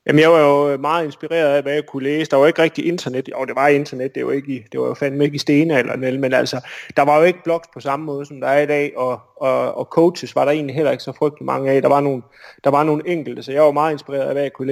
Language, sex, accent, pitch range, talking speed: Danish, male, native, 130-155 Hz, 315 wpm